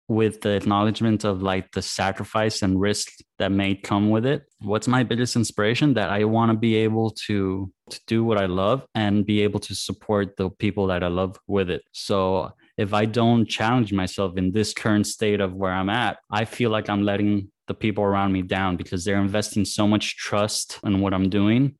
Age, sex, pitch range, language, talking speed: 20-39, male, 100-115 Hz, English, 210 wpm